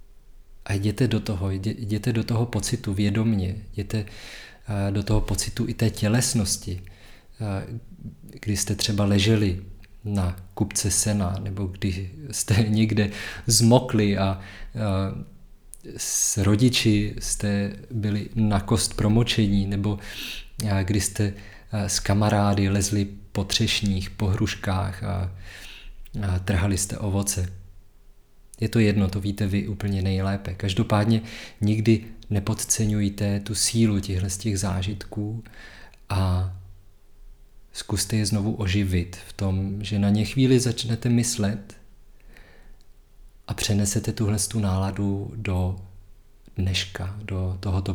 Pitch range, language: 95-110 Hz, Czech